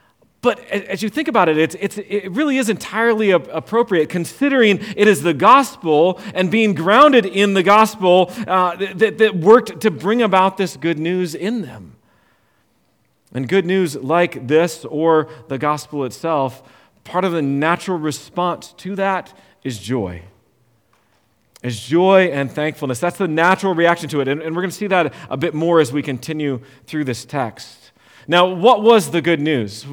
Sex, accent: male, American